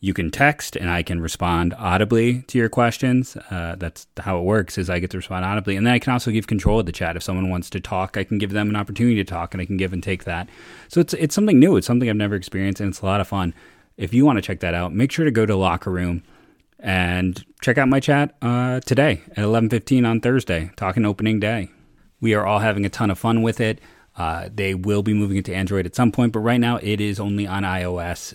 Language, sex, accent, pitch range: English, male, American, 90-110 Hz